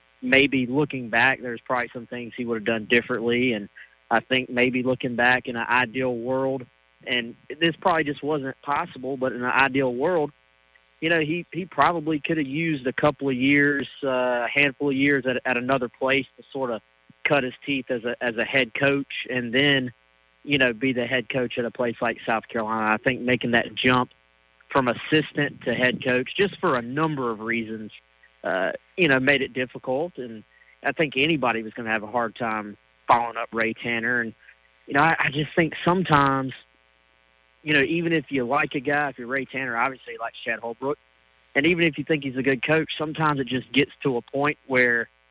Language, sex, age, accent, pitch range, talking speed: English, male, 30-49, American, 115-140 Hz, 210 wpm